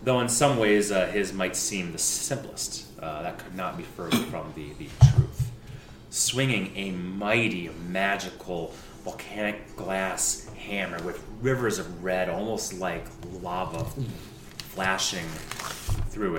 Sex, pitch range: male, 85-110 Hz